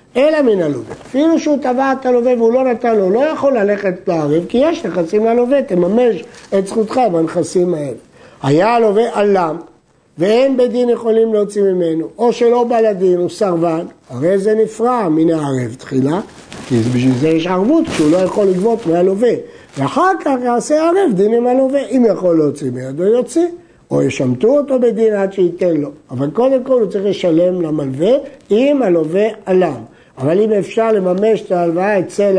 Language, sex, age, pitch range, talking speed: Hebrew, male, 60-79, 170-245 Hz, 170 wpm